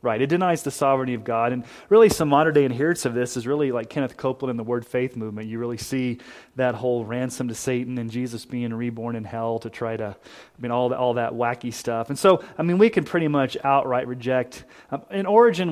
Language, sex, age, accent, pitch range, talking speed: English, male, 30-49, American, 125-155 Hz, 235 wpm